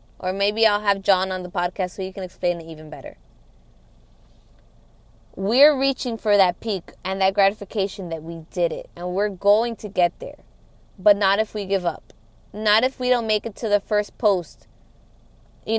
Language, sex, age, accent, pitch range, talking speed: English, female, 20-39, American, 170-215 Hz, 190 wpm